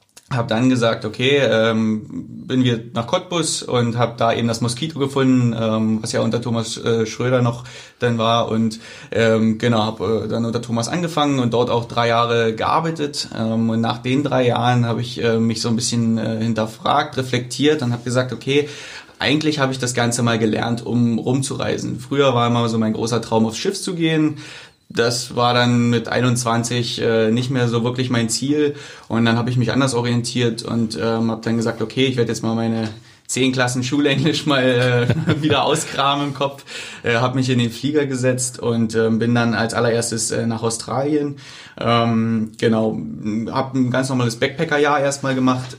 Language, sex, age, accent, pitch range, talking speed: German, male, 30-49, German, 115-130 Hz, 185 wpm